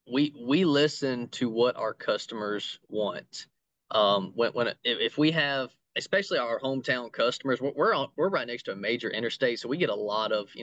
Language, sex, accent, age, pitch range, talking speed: English, male, American, 20-39, 110-145 Hz, 200 wpm